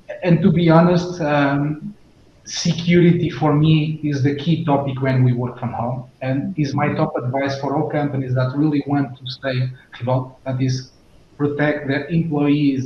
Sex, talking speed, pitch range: male, 175 wpm, 135-150 Hz